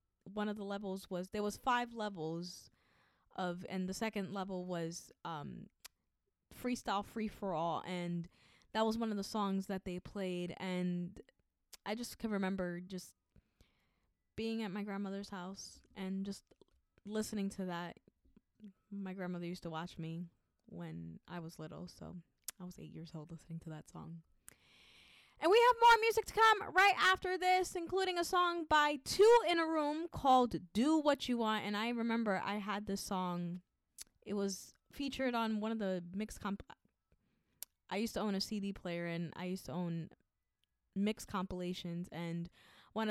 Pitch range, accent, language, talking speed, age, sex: 180-230 Hz, American, English, 165 wpm, 20-39, female